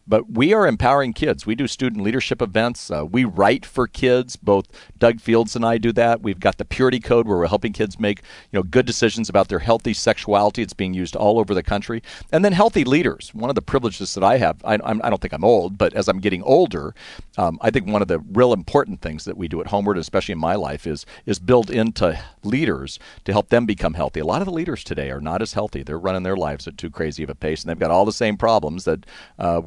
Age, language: 50-69, English